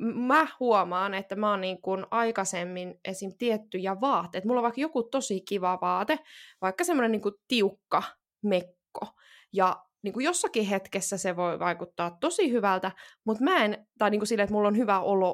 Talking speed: 170 wpm